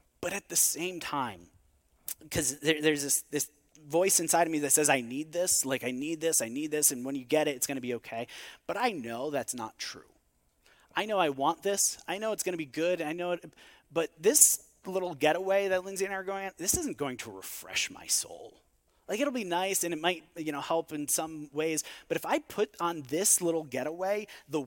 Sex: male